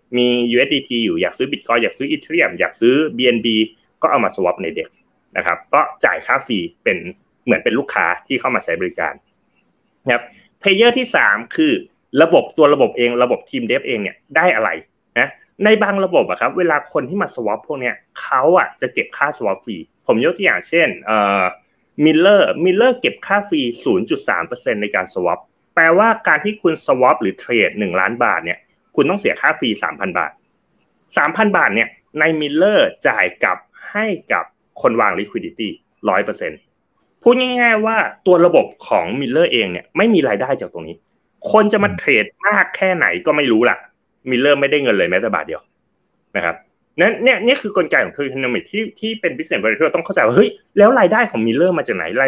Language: Thai